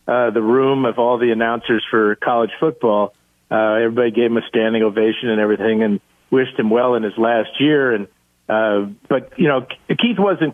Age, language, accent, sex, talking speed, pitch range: 50-69, English, American, male, 195 wpm, 110-135 Hz